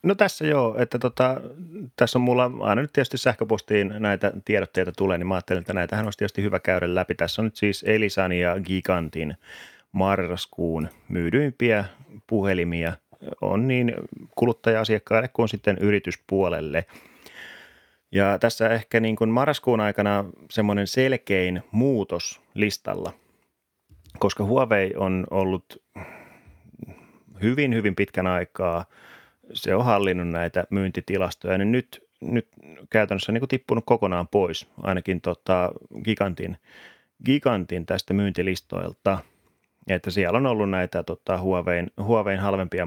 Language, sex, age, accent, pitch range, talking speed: Finnish, male, 30-49, native, 95-115 Hz, 120 wpm